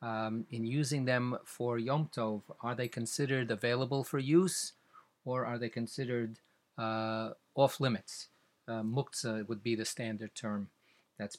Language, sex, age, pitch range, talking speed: English, male, 40-59, 115-140 Hz, 135 wpm